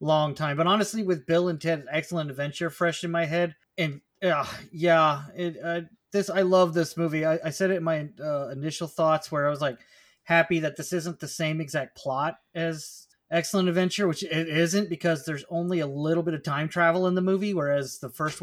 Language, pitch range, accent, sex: English, 150-185 Hz, American, male